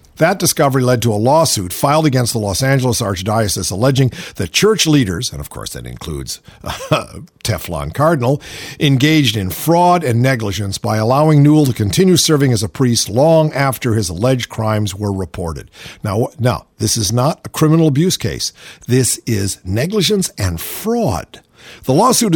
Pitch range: 110-150 Hz